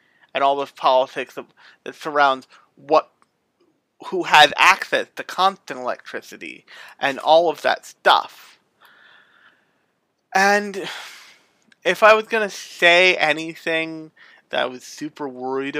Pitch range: 135-170 Hz